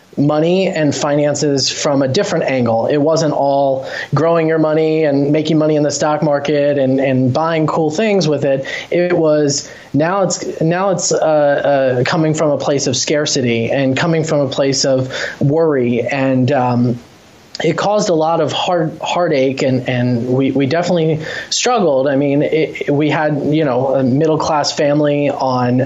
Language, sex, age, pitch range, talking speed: English, male, 20-39, 130-155 Hz, 165 wpm